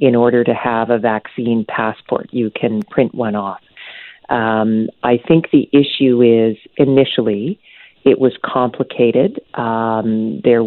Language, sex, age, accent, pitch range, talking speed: English, female, 40-59, American, 115-130 Hz, 135 wpm